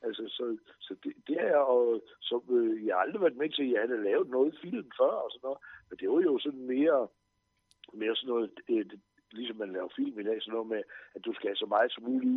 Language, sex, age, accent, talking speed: Danish, male, 60-79, native, 255 wpm